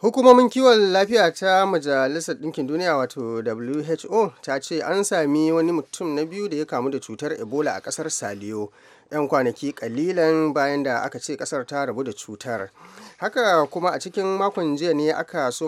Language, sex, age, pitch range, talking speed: English, male, 30-49, 120-155 Hz, 170 wpm